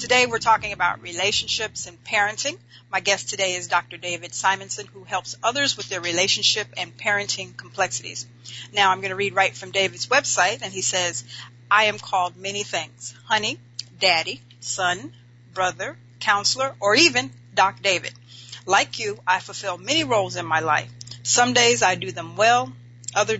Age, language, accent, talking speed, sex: 40-59, English, American, 165 wpm, female